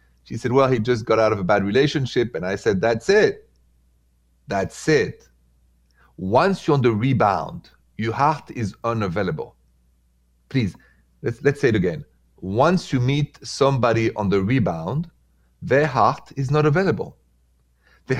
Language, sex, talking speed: English, male, 150 wpm